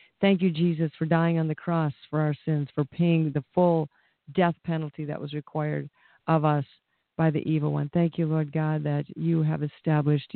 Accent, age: American, 50-69